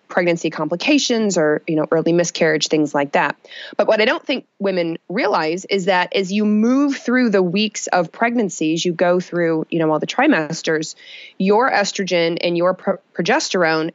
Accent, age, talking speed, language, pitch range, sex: American, 20-39, 175 wpm, English, 170-210 Hz, female